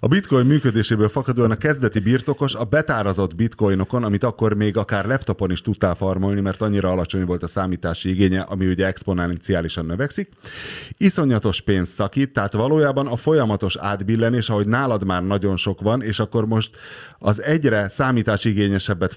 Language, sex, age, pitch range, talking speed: Hungarian, male, 30-49, 95-125 Hz, 155 wpm